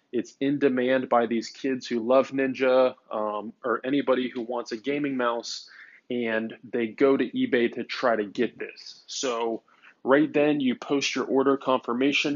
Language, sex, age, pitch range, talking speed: English, male, 20-39, 120-135 Hz, 170 wpm